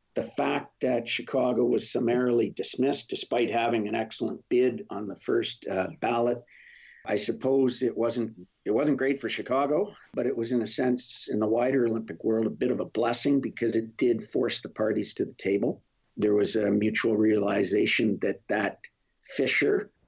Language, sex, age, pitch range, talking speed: English, male, 50-69, 110-120 Hz, 175 wpm